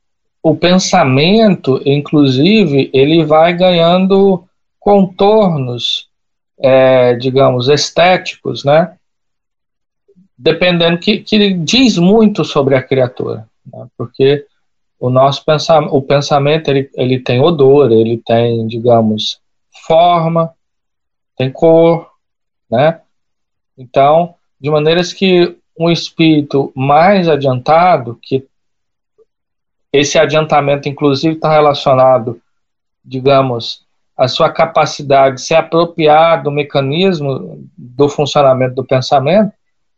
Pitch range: 130-170 Hz